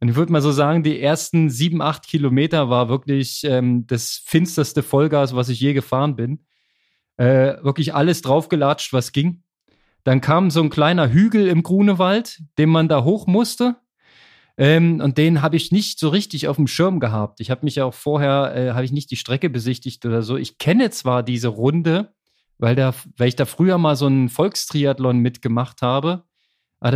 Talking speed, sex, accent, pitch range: 190 wpm, male, German, 130-165 Hz